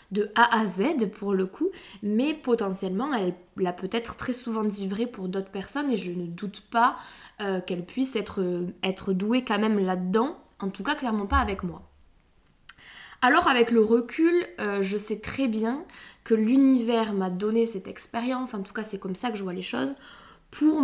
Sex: female